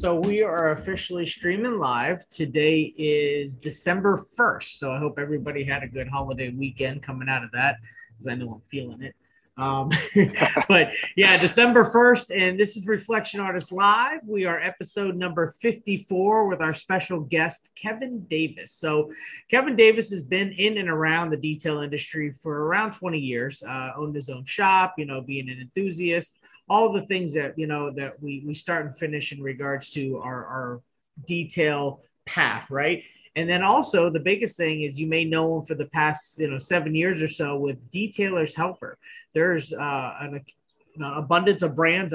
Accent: American